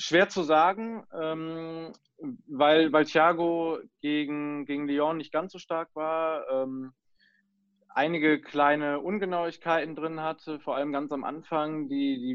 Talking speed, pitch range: 135 wpm, 140-165 Hz